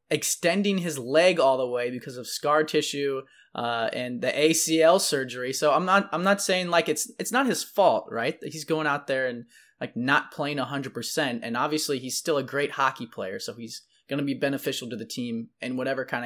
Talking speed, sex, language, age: 210 wpm, male, English, 20-39